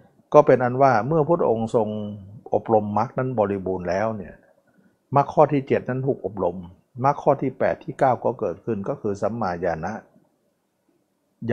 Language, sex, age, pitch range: Thai, male, 60-79, 95-130 Hz